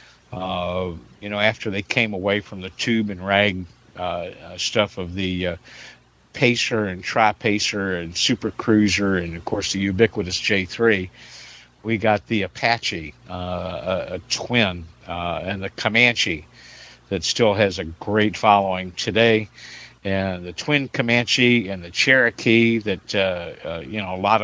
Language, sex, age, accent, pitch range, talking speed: English, male, 50-69, American, 95-115 Hz, 150 wpm